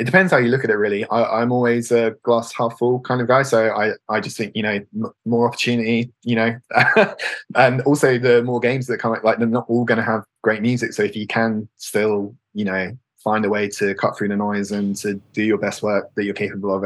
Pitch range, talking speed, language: 105-120 Hz, 255 wpm, English